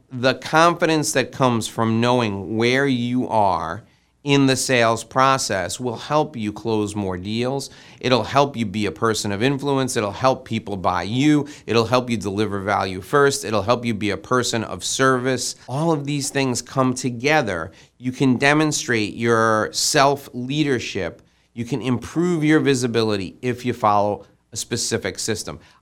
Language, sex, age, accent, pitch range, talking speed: English, male, 40-59, American, 105-135 Hz, 160 wpm